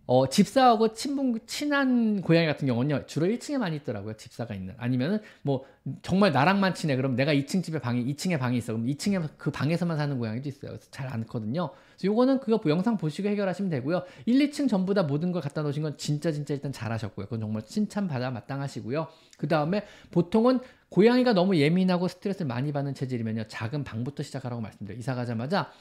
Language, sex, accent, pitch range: Korean, male, native, 125-185 Hz